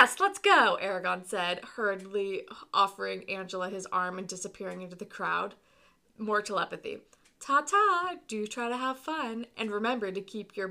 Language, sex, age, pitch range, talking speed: English, female, 20-39, 190-255 Hz, 150 wpm